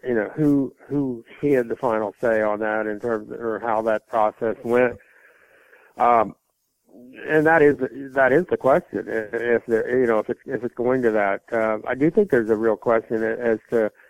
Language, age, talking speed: English, 50-69, 205 wpm